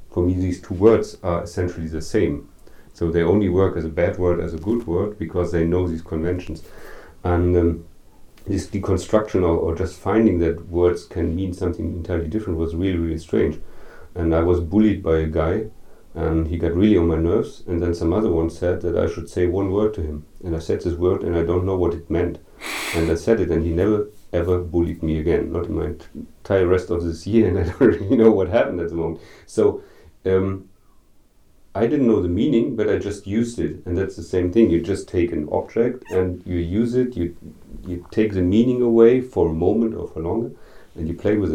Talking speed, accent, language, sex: 225 wpm, German, English, male